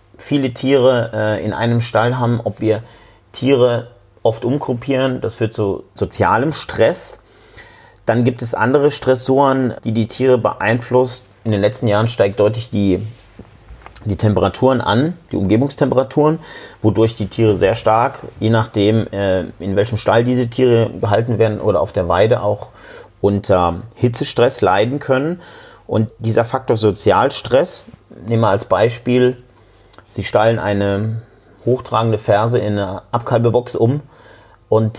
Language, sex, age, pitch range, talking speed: German, male, 40-59, 105-125 Hz, 135 wpm